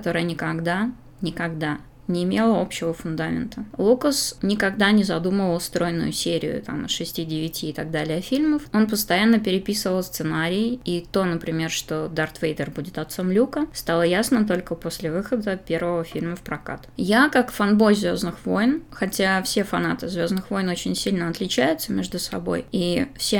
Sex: female